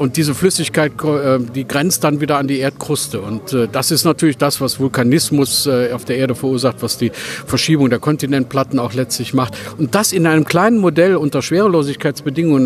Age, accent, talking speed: 50-69, German, 175 wpm